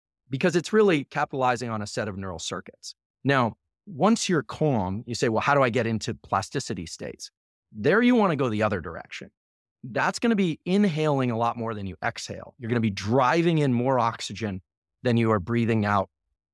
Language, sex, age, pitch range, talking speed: English, male, 30-49, 100-140 Hz, 190 wpm